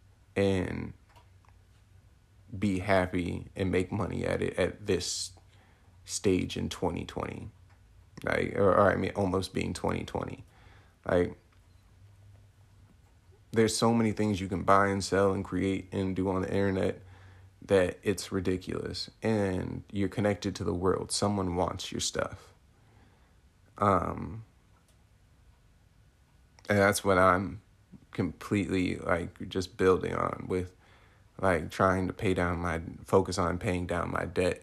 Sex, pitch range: male, 90-105 Hz